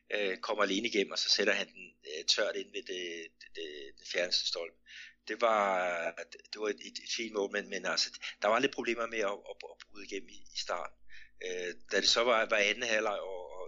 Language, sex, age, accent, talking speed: Danish, male, 60-79, native, 210 wpm